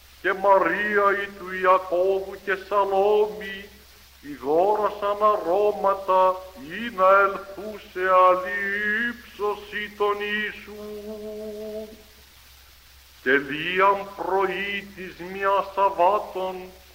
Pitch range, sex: 190-210 Hz, male